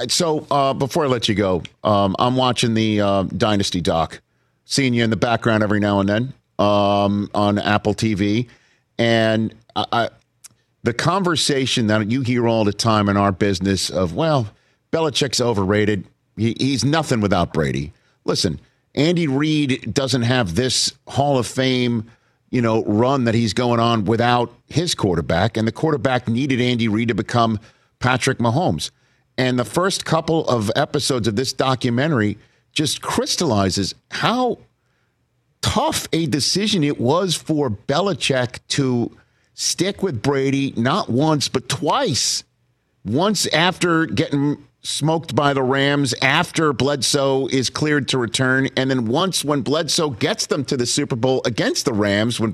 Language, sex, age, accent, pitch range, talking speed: English, male, 50-69, American, 110-145 Hz, 155 wpm